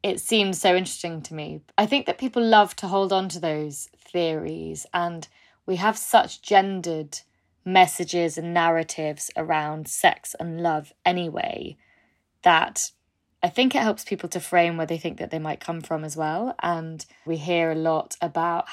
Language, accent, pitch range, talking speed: English, British, 155-180 Hz, 175 wpm